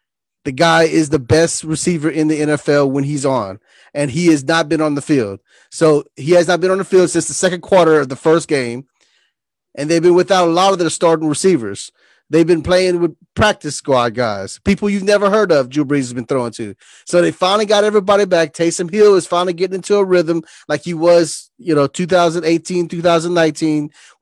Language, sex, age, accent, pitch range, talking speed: English, male, 30-49, American, 150-180 Hz, 210 wpm